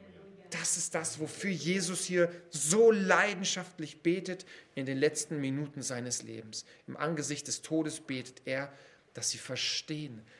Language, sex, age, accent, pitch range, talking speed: Portuguese, male, 40-59, German, 120-180 Hz, 140 wpm